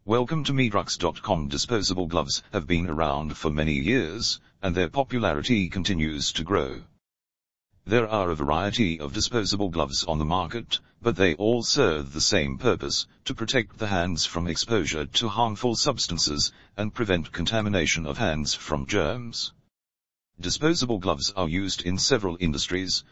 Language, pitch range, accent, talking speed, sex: English, 75-110 Hz, British, 150 wpm, male